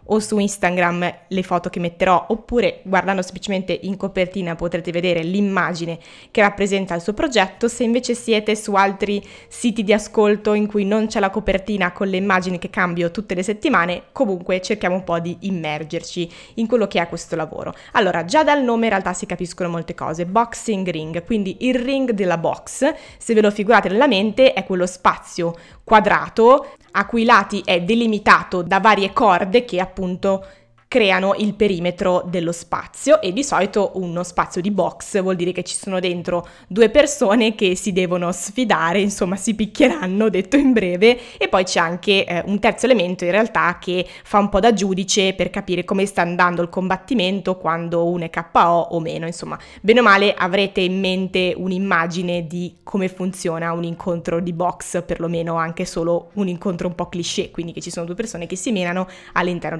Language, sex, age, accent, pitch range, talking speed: Italian, female, 20-39, native, 175-210 Hz, 185 wpm